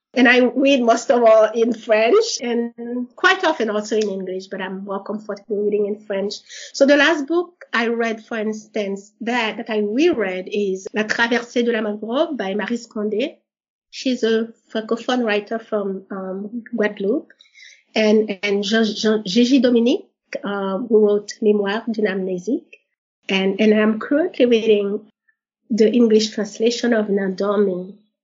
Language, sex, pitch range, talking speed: English, female, 205-245 Hz, 155 wpm